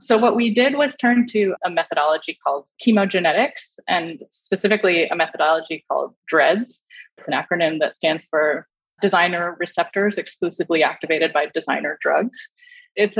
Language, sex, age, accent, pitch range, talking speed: English, female, 20-39, American, 170-225 Hz, 140 wpm